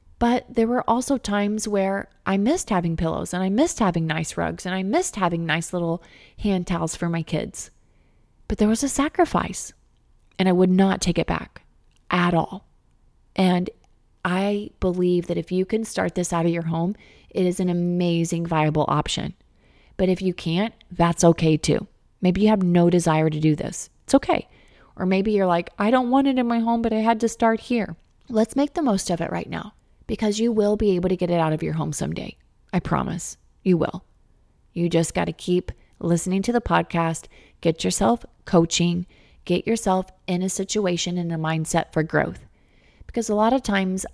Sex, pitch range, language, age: female, 165-210 Hz, English, 30-49